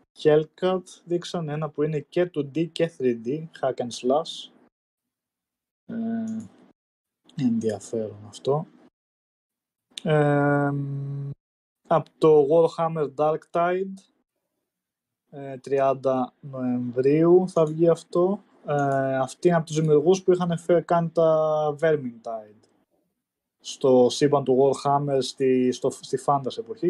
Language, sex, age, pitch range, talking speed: Greek, male, 20-39, 125-165 Hz, 100 wpm